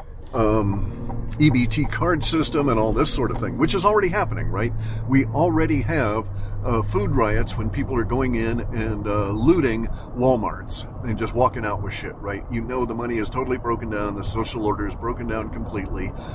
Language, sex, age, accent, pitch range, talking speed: English, male, 50-69, American, 105-125 Hz, 190 wpm